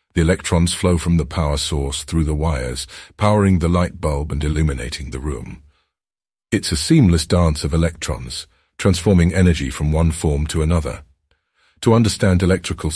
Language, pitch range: English, 75-90 Hz